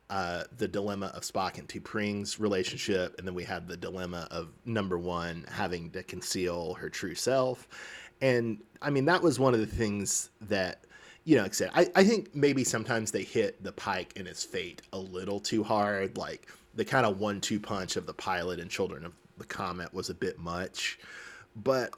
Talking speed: 195 wpm